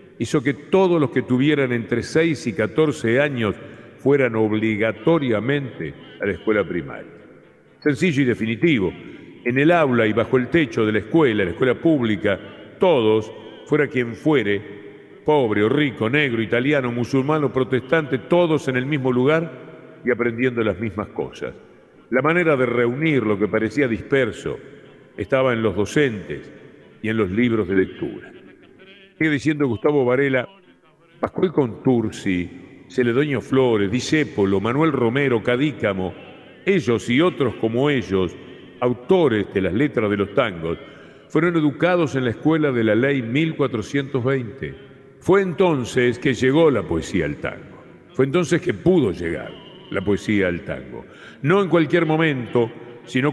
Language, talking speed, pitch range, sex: Spanish, 145 wpm, 110-150 Hz, male